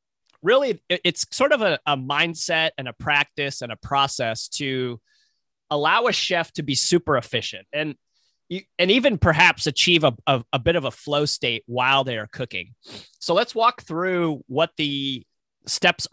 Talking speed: 165 wpm